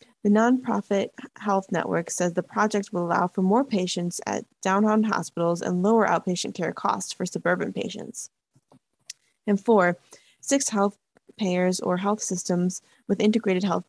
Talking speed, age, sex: 145 wpm, 20-39, female